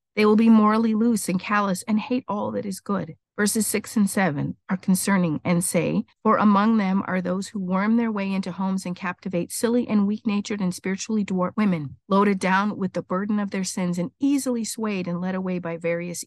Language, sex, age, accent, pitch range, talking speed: English, female, 50-69, American, 175-210 Hz, 210 wpm